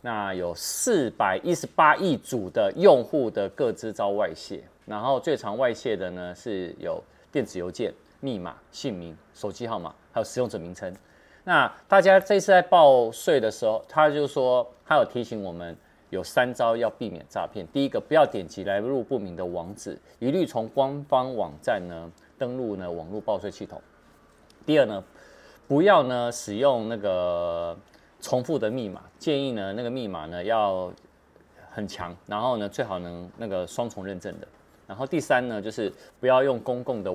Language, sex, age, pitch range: Chinese, male, 30-49, 90-130 Hz